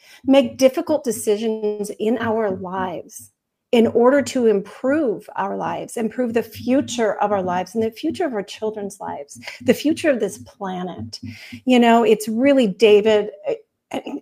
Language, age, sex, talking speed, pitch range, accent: English, 40-59, female, 150 wpm, 200-245 Hz, American